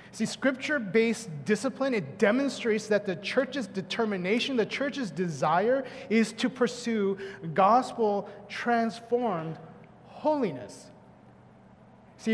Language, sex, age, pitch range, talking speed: English, male, 30-49, 175-215 Hz, 90 wpm